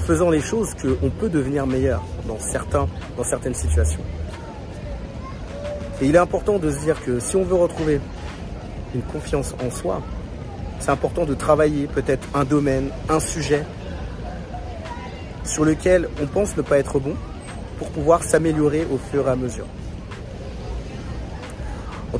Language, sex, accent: French, male, French